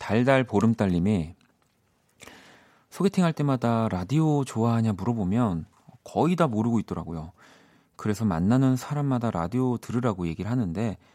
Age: 40-59